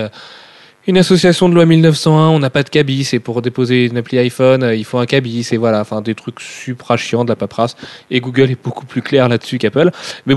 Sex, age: male, 30-49